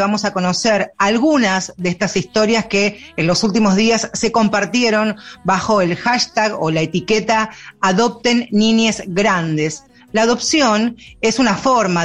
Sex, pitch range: female, 175-225 Hz